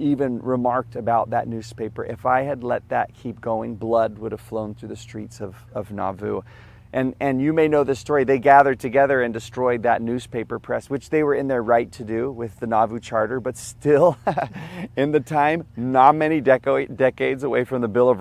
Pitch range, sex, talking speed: 110-130 Hz, male, 205 wpm